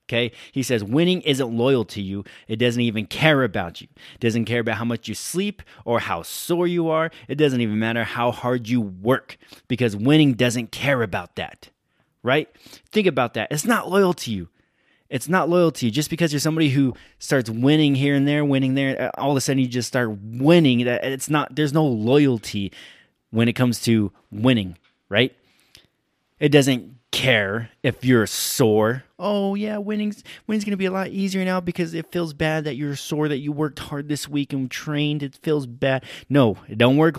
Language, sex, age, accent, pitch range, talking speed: English, male, 20-39, American, 120-150 Hz, 200 wpm